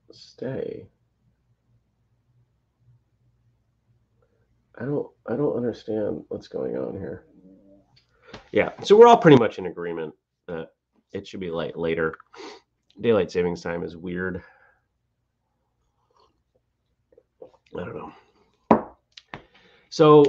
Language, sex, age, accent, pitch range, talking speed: English, male, 30-49, American, 80-115 Hz, 100 wpm